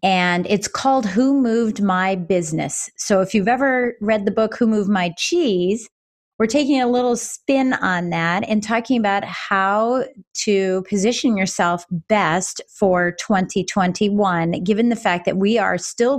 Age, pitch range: 30-49, 185-230 Hz